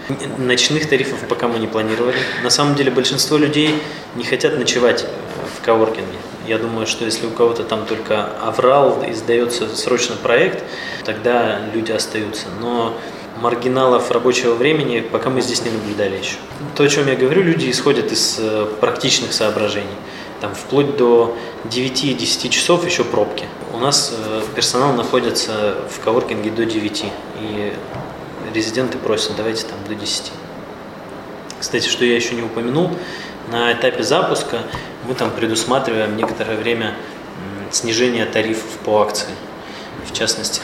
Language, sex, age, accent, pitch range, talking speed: Russian, male, 20-39, native, 110-125 Hz, 140 wpm